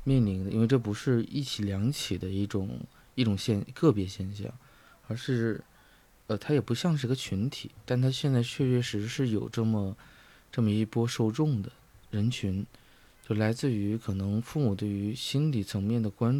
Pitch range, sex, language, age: 105-125 Hz, male, Chinese, 20-39